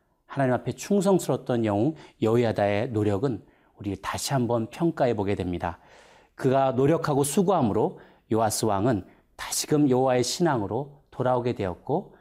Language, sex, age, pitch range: Korean, male, 40-59, 110-145 Hz